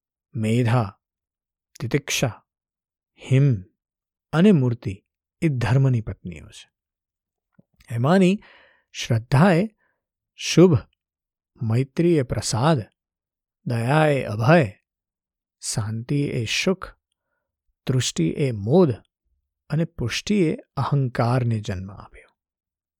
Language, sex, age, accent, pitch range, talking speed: Gujarati, male, 50-69, native, 100-150 Hz, 70 wpm